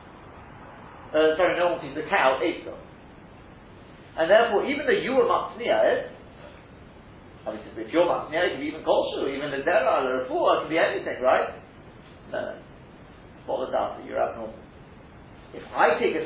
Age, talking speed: 40-59, 165 wpm